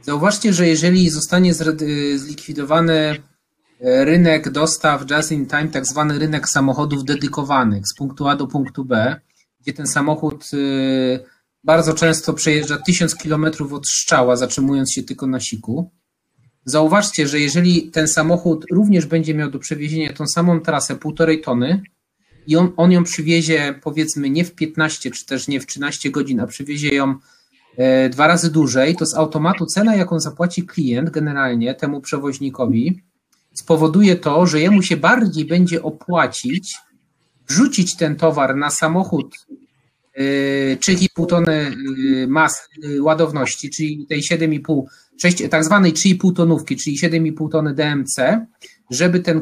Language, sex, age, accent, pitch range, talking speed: Polish, male, 30-49, native, 145-170 Hz, 135 wpm